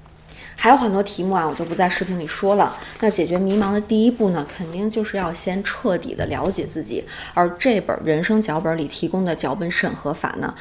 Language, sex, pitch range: Chinese, female, 170-240 Hz